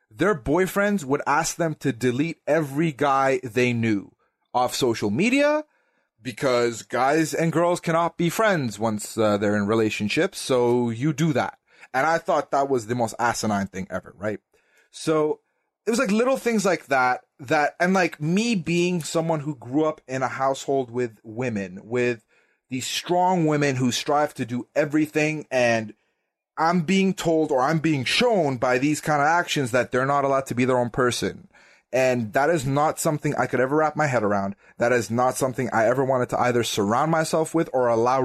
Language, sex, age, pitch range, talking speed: English, male, 30-49, 120-160 Hz, 190 wpm